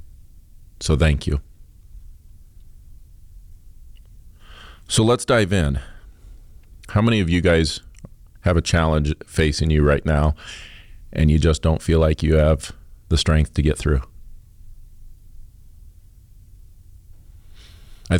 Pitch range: 75-90 Hz